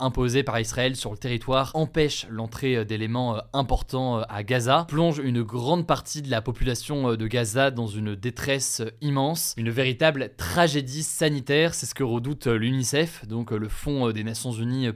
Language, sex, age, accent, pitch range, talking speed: French, male, 20-39, French, 115-145 Hz, 160 wpm